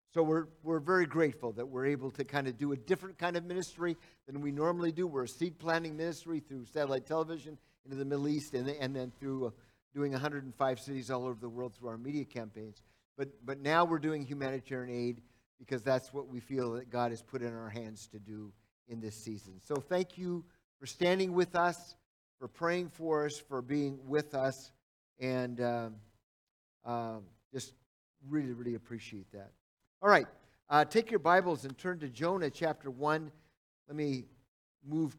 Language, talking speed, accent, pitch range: English, 190 wpm, American, 130-170 Hz